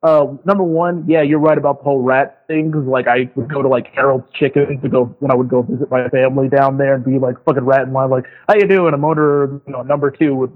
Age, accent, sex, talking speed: 30-49, American, male, 280 wpm